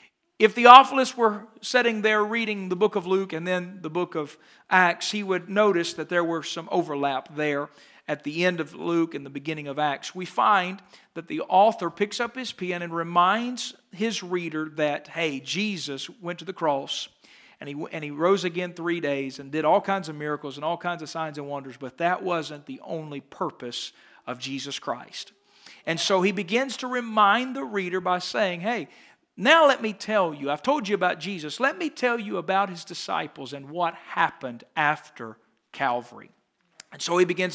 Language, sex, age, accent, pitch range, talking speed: English, male, 50-69, American, 155-205 Hz, 195 wpm